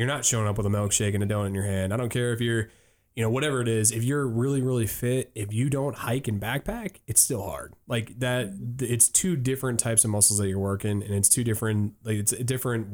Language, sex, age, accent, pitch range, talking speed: English, male, 20-39, American, 105-125 Hz, 260 wpm